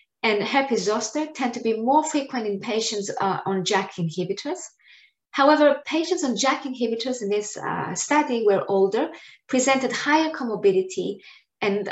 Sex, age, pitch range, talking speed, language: female, 20-39, 200-270 Hz, 145 wpm, English